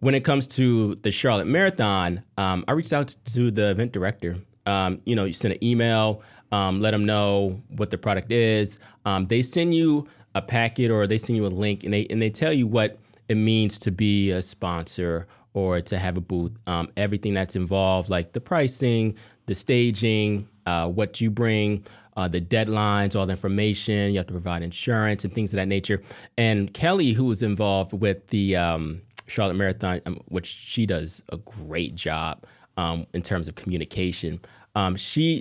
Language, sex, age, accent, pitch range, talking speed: English, male, 30-49, American, 95-115 Hz, 190 wpm